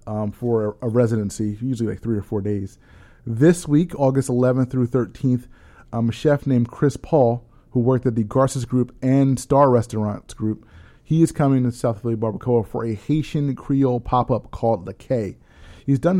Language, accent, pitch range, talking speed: English, American, 110-130 Hz, 185 wpm